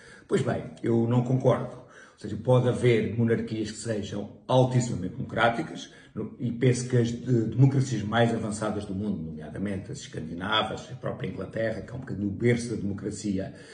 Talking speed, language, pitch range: 160 wpm, Portuguese, 105-125 Hz